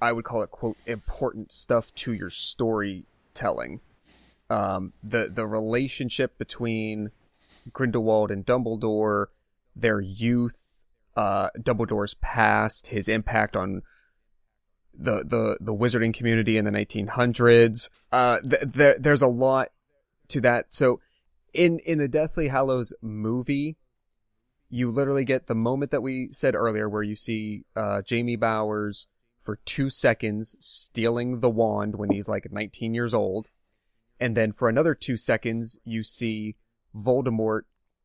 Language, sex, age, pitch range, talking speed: English, male, 30-49, 105-125 Hz, 135 wpm